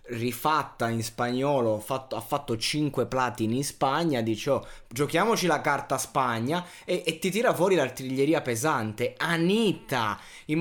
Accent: native